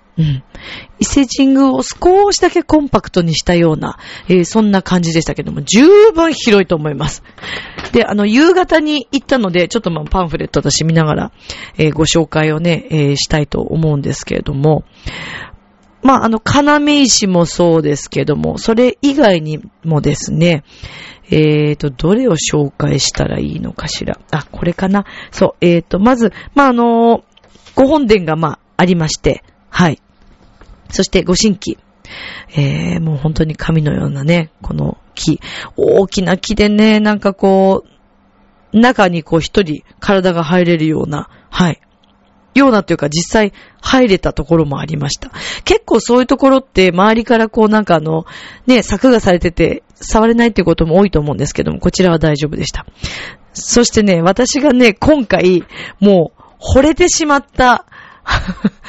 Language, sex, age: Japanese, female, 40-59